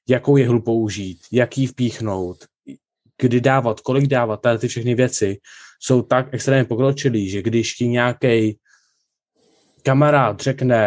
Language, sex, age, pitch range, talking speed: Czech, male, 20-39, 110-130 Hz, 125 wpm